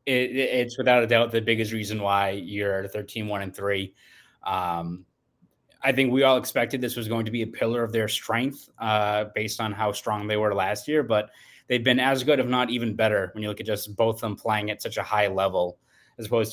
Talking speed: 235 wpm